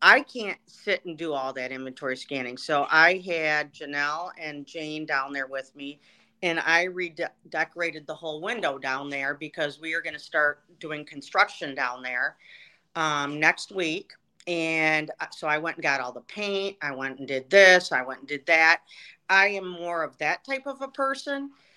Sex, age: female, 40-59